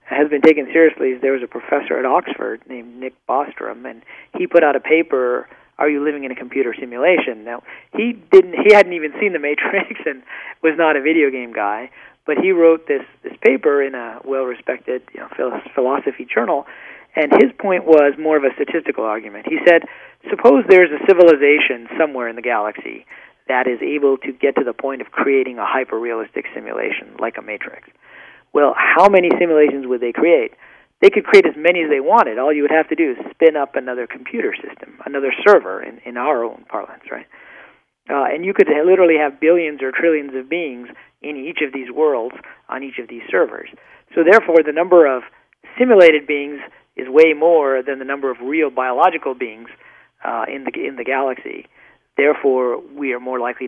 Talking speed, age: 200 wpm, 40-59